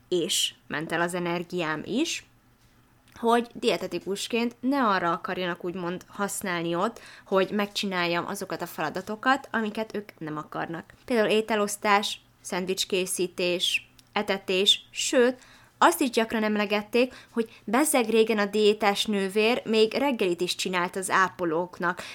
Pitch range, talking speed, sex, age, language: 175-225 Hz, 120 wpm, female, 20-39, Hungarian